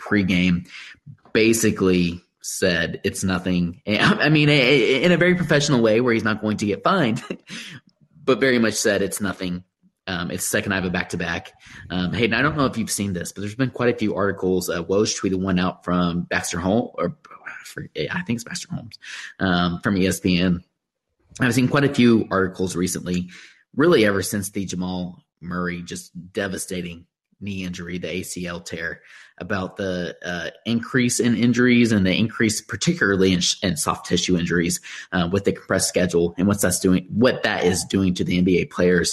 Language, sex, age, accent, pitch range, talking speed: English, male, 20-39, American, 90-110 Hz, 180 wpm